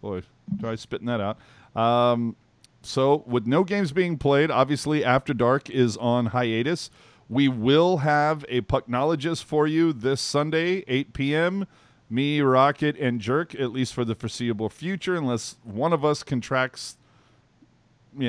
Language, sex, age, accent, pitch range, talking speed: English, male, 40-59, American, 120-150 Hz, 150 wpm